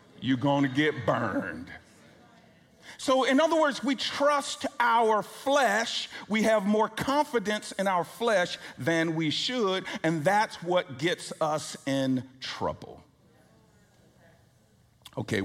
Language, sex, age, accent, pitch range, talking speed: English, male, 50-69, American, 145-190 Hz, 120 wpm